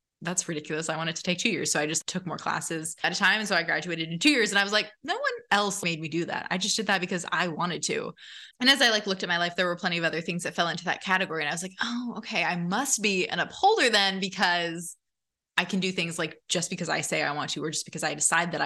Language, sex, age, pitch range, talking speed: English, female, 20-39, 170-215 Hz, 300 wpm